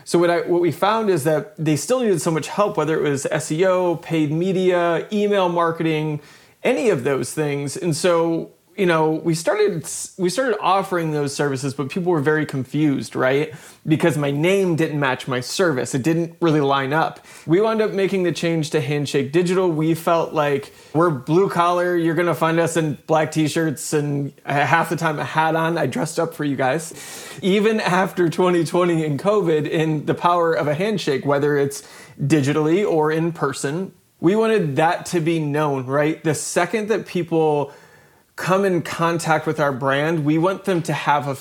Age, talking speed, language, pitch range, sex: 20-39, 190 wpm, English, 145-170 Hz, male